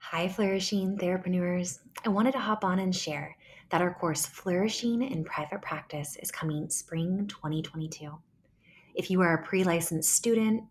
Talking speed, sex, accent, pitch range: 150 wpm, female, American, 160-215 Hz